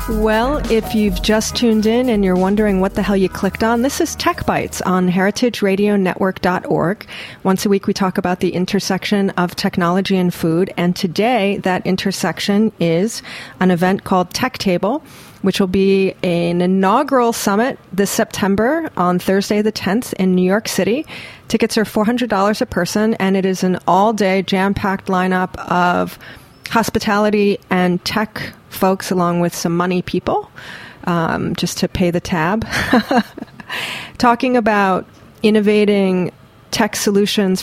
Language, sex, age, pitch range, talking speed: English, female, 30-49, 180-210 Hz, 145 wpm